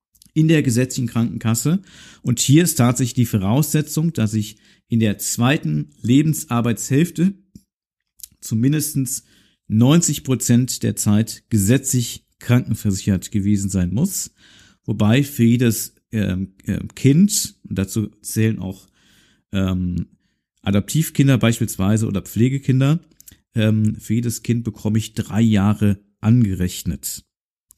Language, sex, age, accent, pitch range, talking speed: German, male, 50-69, German, 110-135 Hz, 105 wpm